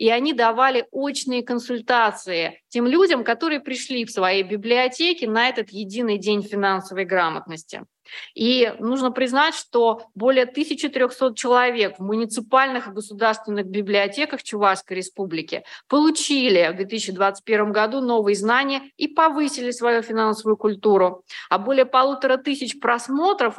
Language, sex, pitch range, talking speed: Russian, female, 205-260 Hz, 120 wpm